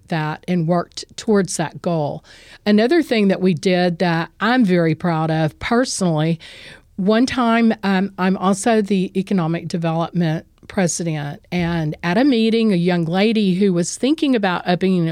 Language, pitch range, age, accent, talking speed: English, 170-210 Hz, 50-69, American, 150 wpm